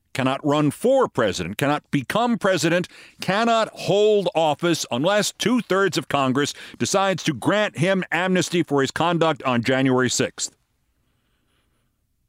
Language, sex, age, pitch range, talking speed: English, male, 50-69, 115-160 Hz, 120 wpm